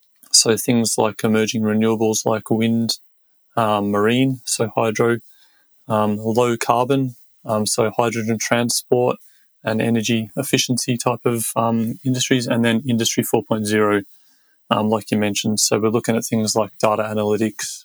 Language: English